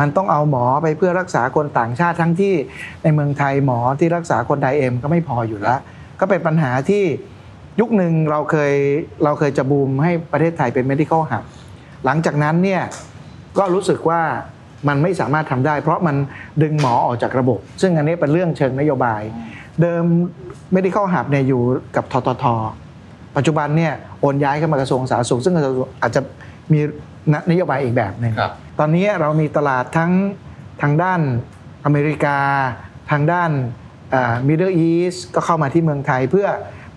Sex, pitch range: male, 130-165 Hz